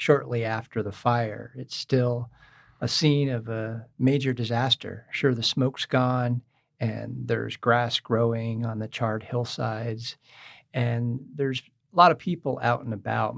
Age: 50-69